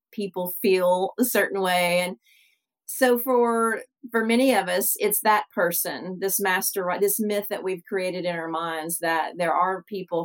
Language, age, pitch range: English, 40-59, 180-210 Hz